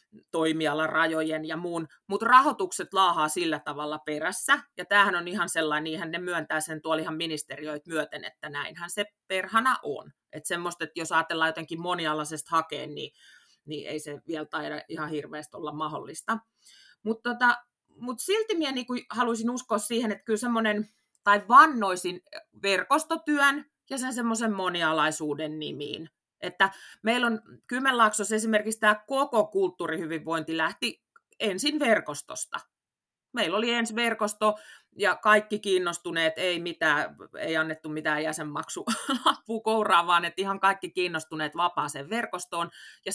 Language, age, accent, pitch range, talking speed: Finnish, 30-49, native, 160-235 Hz, 135 wpm